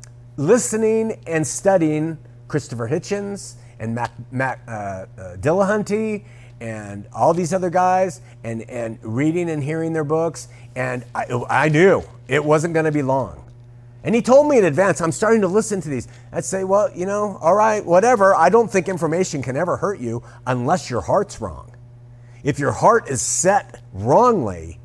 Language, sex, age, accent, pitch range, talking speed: English, male, 50-69, American, 120-165 Hz, 170 wpm